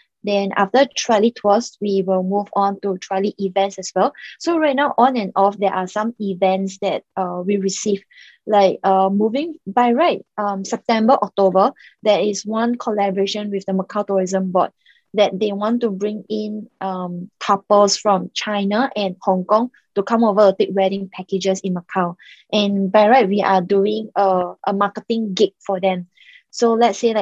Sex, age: female, 20-39